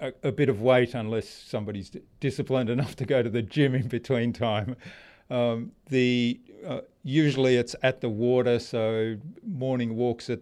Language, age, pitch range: English, 40-59, 115-125 Hz